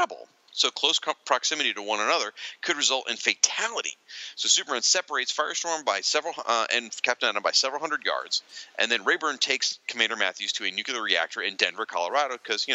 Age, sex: 40-59, male